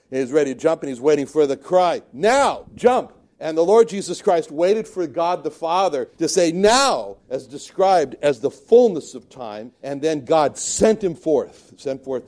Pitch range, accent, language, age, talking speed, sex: 140-215 Hz, American, English, 60-79, 195 wpm, male